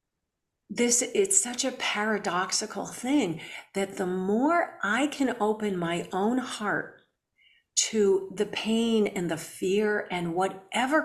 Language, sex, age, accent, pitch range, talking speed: English, female, 50-69, American, 190-250 Hz, 125 wpm